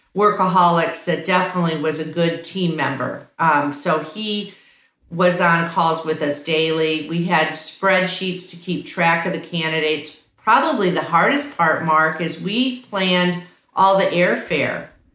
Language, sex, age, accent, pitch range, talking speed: English, female, 50-69, American, 165-190 Hz, 145 wpm